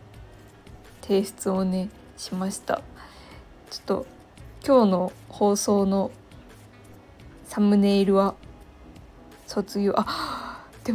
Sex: female